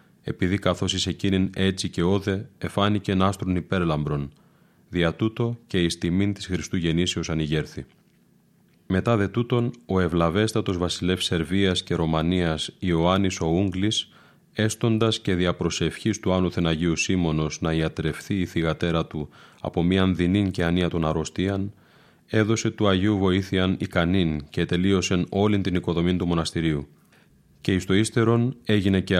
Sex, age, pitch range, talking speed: male, 30-49, 85-100 Hz, 140 wpm